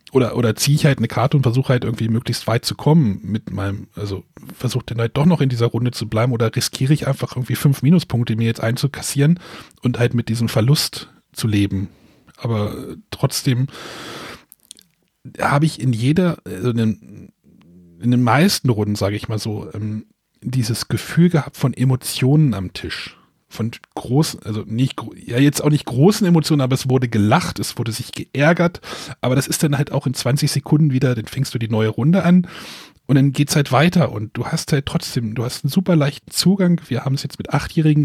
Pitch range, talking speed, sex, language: 115-150 Hz, 200 wpm, male, German